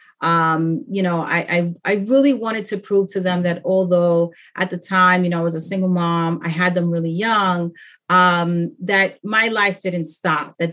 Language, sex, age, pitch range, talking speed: English, female, 30-49, 175-225 Hz, 200 wpm